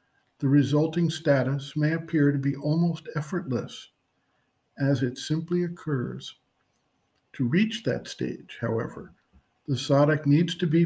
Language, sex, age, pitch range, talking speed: English, male, 60-79, 140-170 Hz, 125 wpm